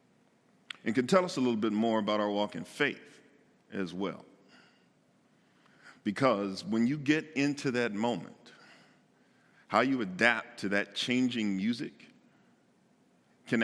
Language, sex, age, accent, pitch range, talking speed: English, male, 50-69, American, 105-130 Hz, 130 wpm